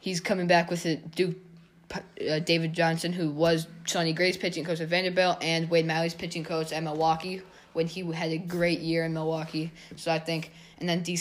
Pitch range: 160-180 Hz